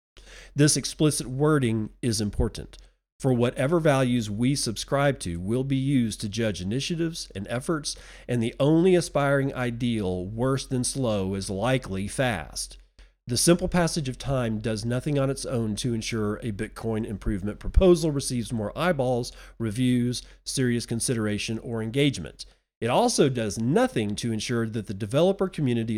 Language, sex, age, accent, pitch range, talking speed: English, male, 40-59, American, 110-145 Hz, 150 wpm